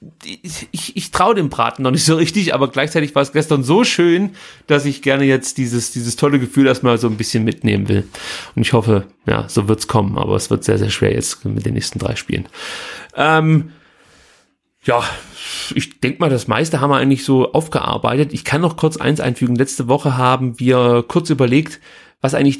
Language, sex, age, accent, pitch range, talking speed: German, male, 30-49, German, 125-160 Hz, 205 wpm